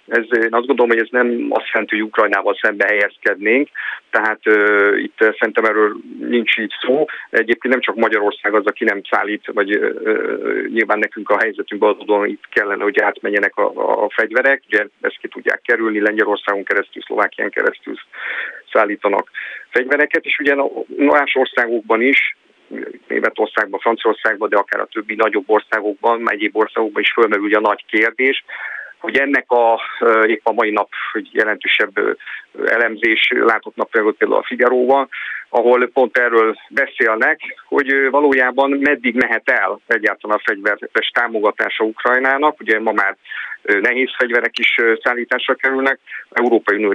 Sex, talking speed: male, 150 wpm